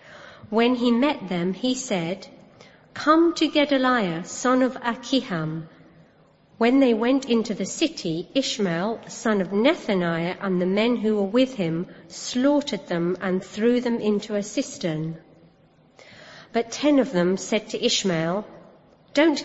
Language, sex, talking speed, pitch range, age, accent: English, female, 140 wpm, 190-250 Hz, 50-69, British